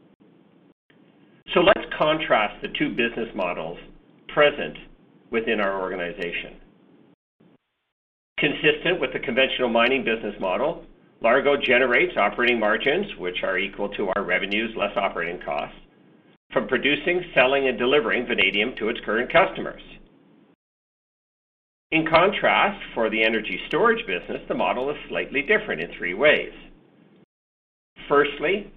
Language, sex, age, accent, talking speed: English, male, 50-69, American, 120 wpm